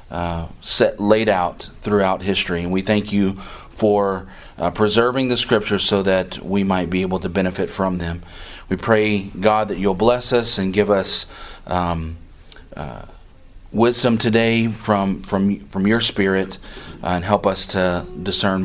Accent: American